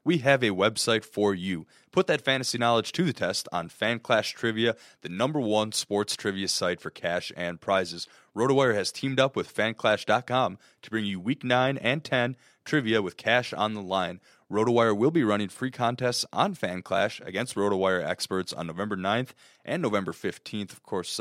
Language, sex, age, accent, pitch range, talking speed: English, male, 20-39, American, 95-115 Hz, 185 wpm